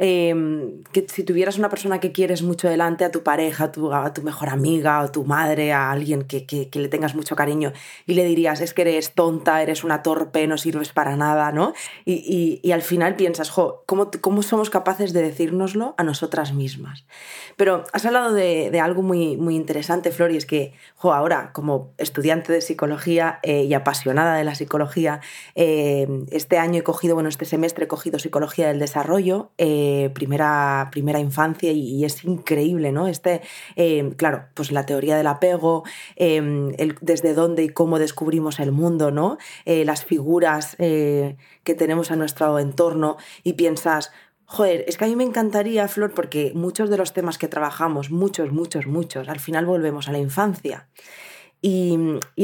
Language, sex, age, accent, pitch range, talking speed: Spanish, female, 20-39, Spanish, 150-175 Hz, 190 wpm